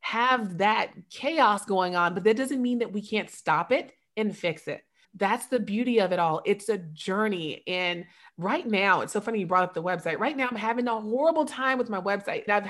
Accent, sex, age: American, female, 30-49